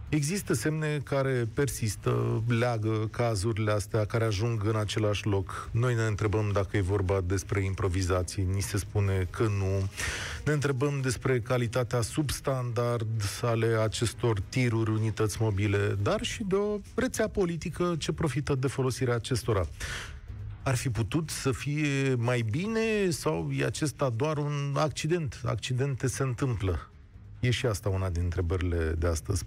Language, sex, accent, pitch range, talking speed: Romanian, male, native, 100-130 Hz, 145 wpm